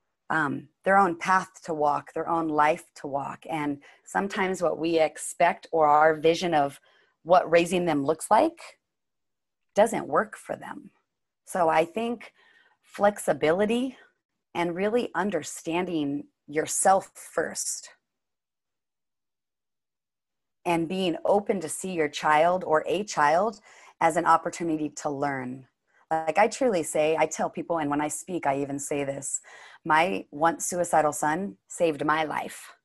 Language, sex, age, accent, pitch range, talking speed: English, female, 30-49, American, 155-195 Hz, 135 wpm